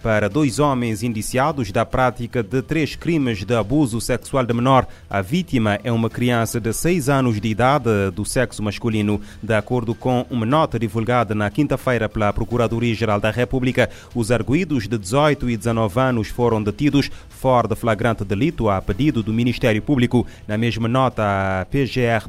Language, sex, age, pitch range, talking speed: Portuguese, male, 30-49, 110-130 Hz, 165 wpm